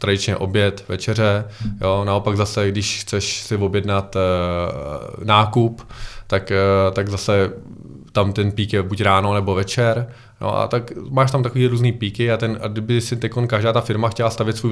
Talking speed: 180 wpm